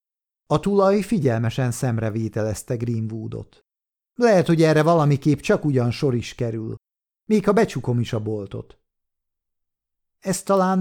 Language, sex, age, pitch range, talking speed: Hungarian, male, 50-69, 110-160 Hz, 130 wpm